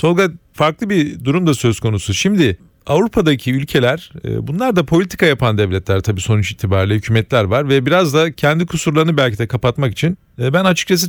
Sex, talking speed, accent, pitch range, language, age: male, 170 wpm, native, 120-155 Hz, Turkish, 40-59